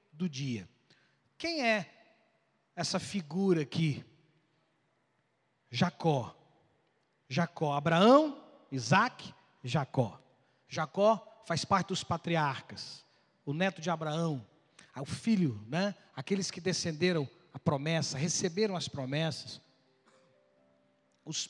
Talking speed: 90 wpm